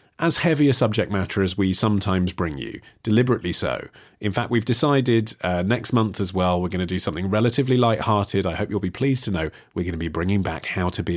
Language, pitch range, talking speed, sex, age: English, 90-125 Hz, 235 wpm, male, 30-49